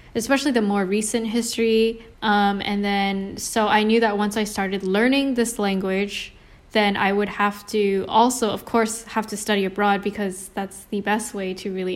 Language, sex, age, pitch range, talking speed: English, female, 10-29, 195-230 Hz, 185 wpm